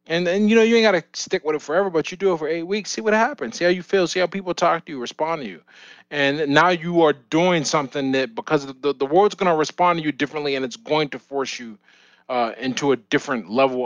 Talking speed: 275 wpm